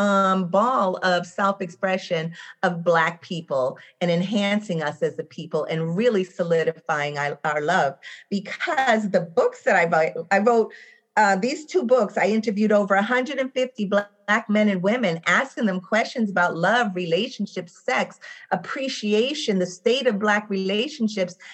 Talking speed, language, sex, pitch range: 140 wpm, English, female, 185-235 Hz